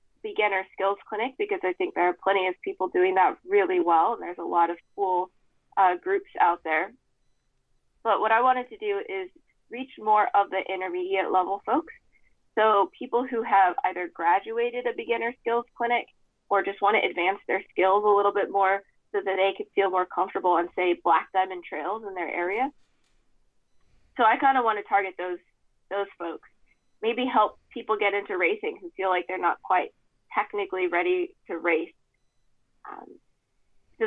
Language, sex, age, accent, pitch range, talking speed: English, female, 20-39, American, 185-285 Hz, 180 wpm